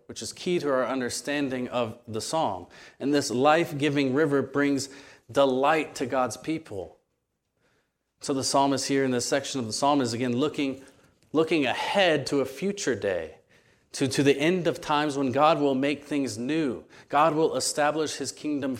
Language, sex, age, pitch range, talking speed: English, male, 30-49, 125-150 Hz, 170 wpm